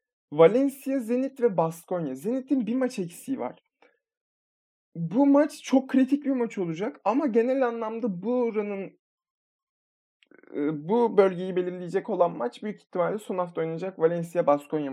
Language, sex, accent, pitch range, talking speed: Turkish, male, native, 170-245 Hz, 130 wpm